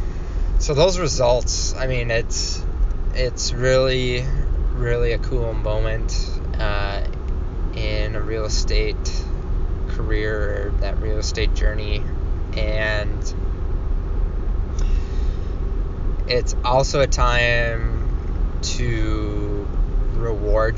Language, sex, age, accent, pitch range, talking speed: English, male, 20-39, American, 80-105 Hz, 85 wpm